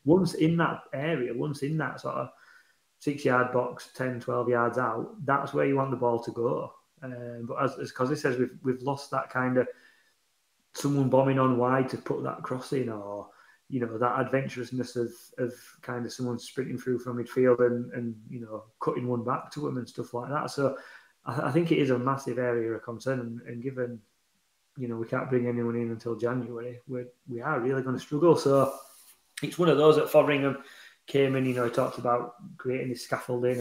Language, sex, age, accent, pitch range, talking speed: English, male, 30-49, British, 120-135 Hz, 210 wpm